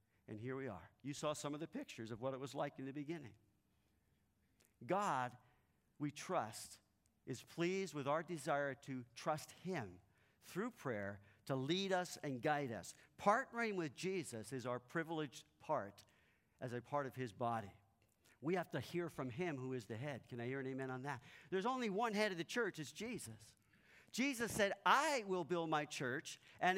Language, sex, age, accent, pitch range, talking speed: English, male, 50-69, American, 130-190 Hz, 190 wpm